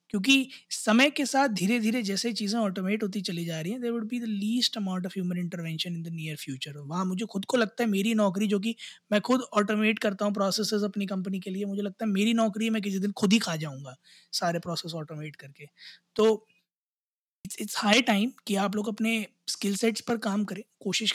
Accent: native